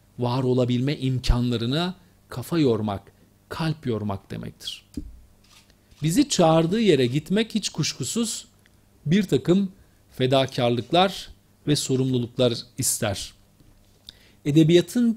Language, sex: Turkish, male